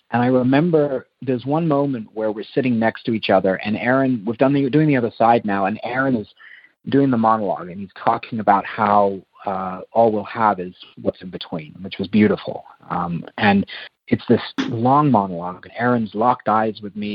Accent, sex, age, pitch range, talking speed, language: American, male, 40-59, 105-135 Hz, 205 wpm, English